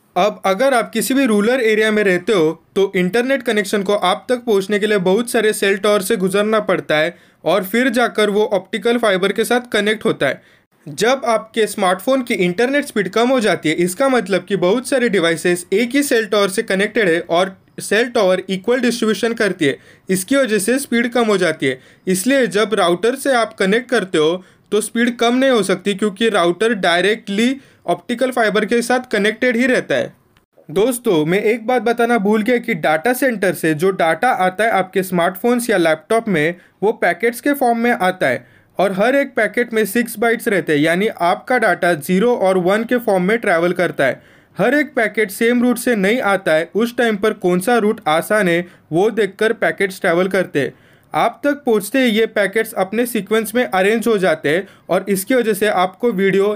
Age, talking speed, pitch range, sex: 20-39, 205 wpm, 185-235 Hz, male